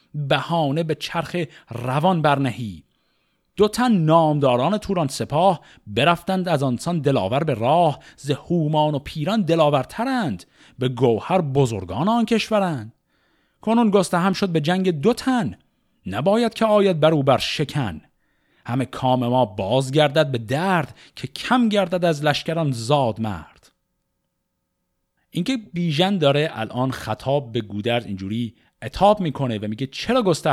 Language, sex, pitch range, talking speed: Persian, male, 115-170 Hz, 125 wpm